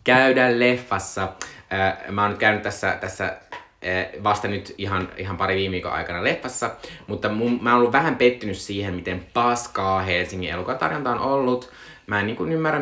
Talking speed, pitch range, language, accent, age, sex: 160 wpm, 90-120 Hz, Finnish, native, 20-39, male